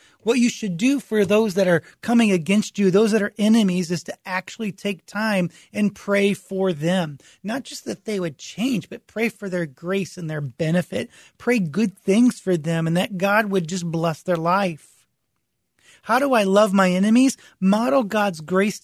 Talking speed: 190 wpm